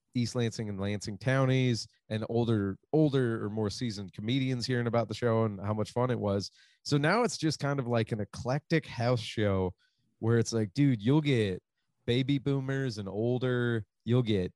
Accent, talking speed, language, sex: American, 185 wpm, English, male